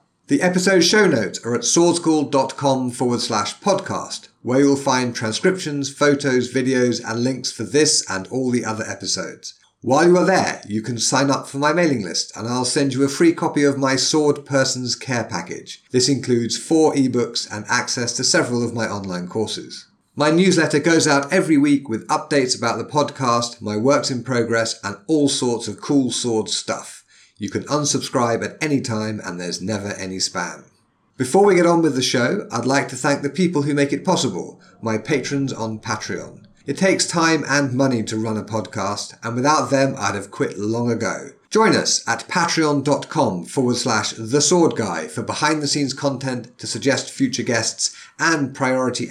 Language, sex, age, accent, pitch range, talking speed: English, male, 50-69, British, 115-145 Hz, 180 wpm